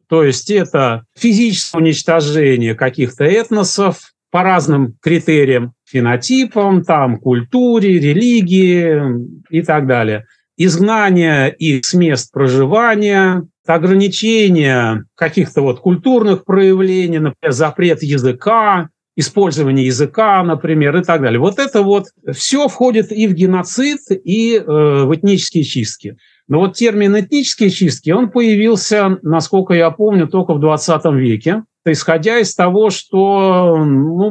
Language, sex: Russian, male